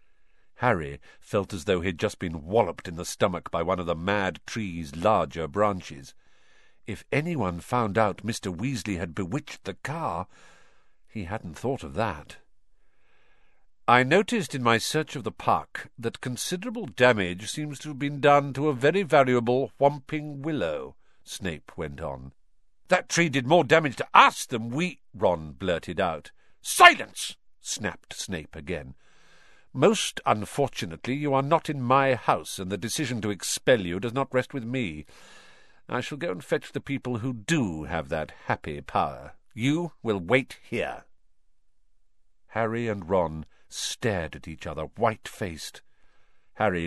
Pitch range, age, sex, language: 90-135 Hz, 50-69, male, English